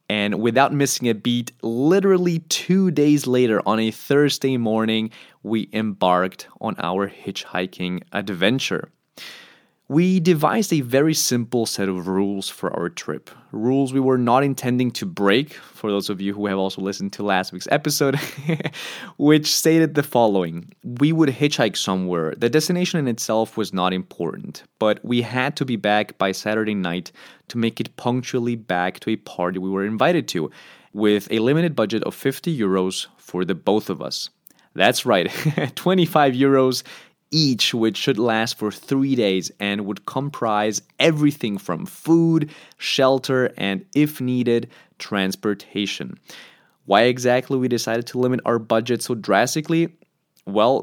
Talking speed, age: 155 wpm, 20-39